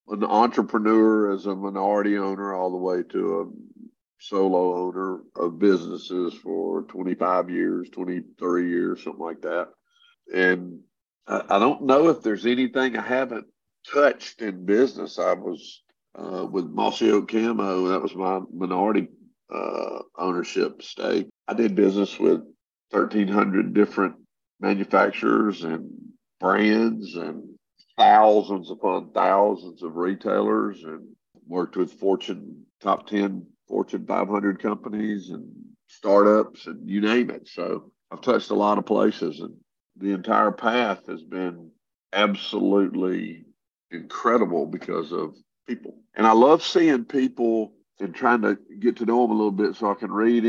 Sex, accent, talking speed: male, American, 140 wpm